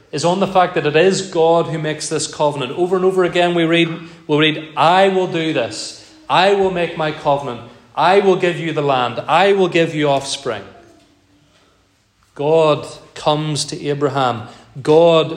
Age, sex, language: 30-49, male, English